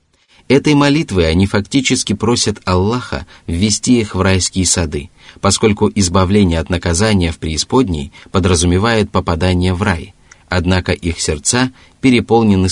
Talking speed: 120 wpm